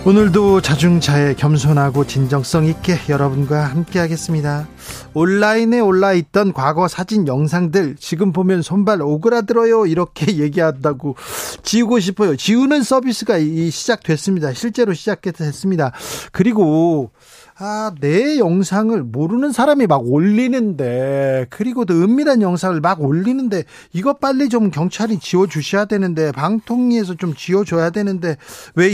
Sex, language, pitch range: male, Korean, 155-210 Hz